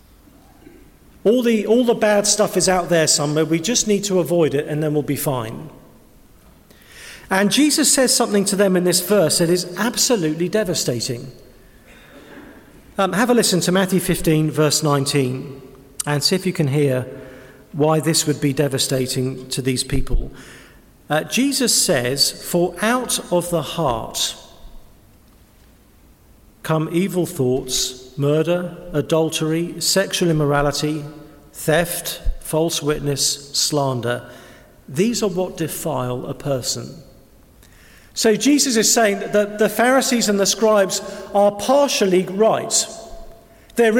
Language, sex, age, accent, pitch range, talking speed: English, male, 50-69, British, 145-210 Hz, 130 wpm